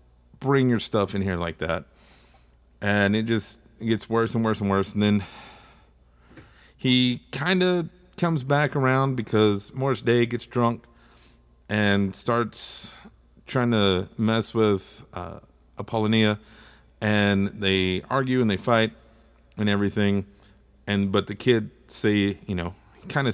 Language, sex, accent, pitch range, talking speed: English, male, American, 95-115 Hz, 135 wpm